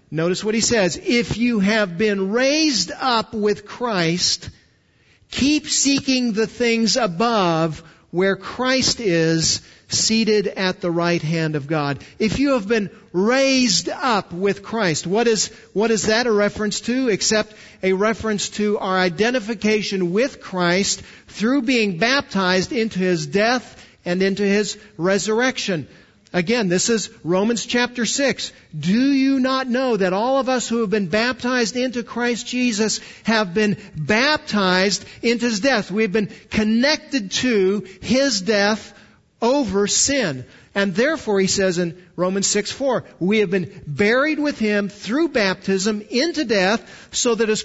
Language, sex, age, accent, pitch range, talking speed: English, male, 50-69, American, 190-250 Hz, 145 wpm